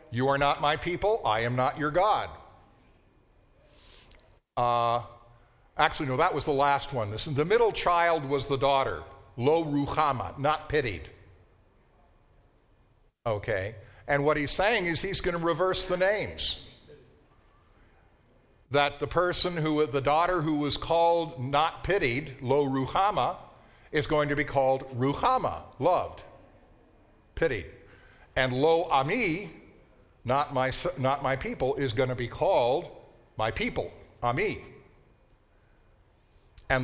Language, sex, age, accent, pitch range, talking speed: English, male, 50-69, American, 120-170 Hz, 120 wpm